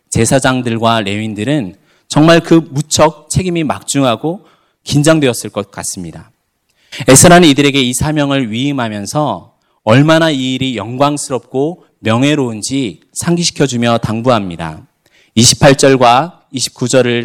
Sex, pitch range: male, 110-145 Hz